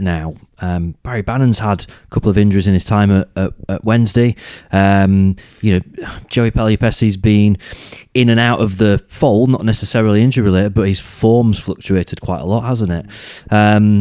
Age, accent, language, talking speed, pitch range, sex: 30-49, British, English, 180 wpm, 90-115 Hz, male